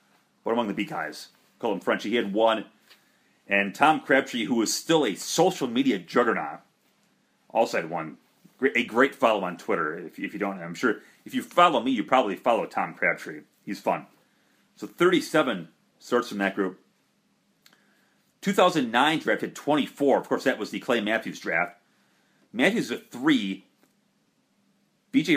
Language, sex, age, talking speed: English, male, 30-49, 160 wpm